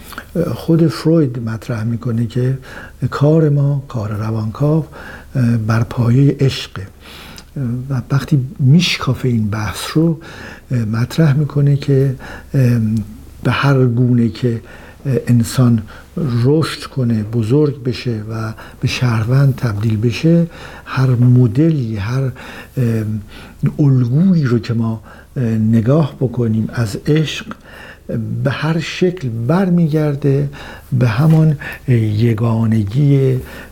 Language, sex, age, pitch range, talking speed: Persian, male, 60-79, 110-140 Hz, 95 wpm